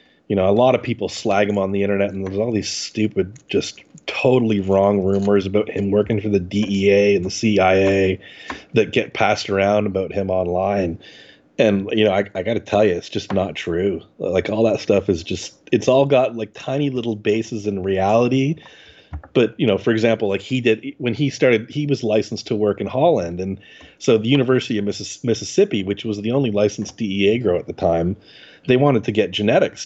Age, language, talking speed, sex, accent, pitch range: 30-49, English, 205 wpm, male, American, 100-120 Hz